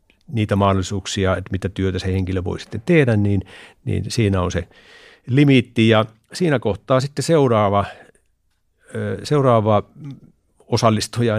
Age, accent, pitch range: 50-69, native, 100-120 Hz